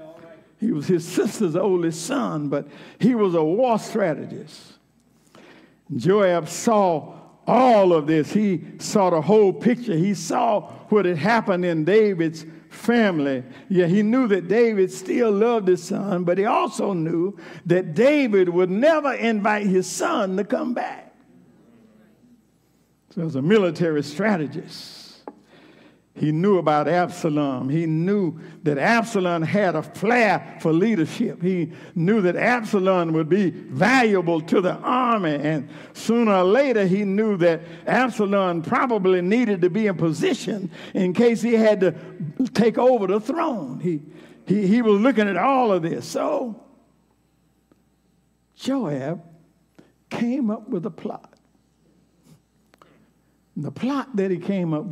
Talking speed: 140 wpm